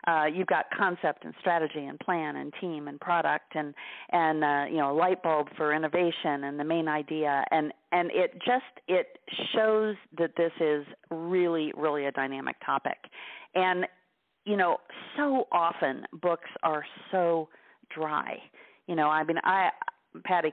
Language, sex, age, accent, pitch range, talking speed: English, female, 40-59, American, 150-180 Hz, 160 wpm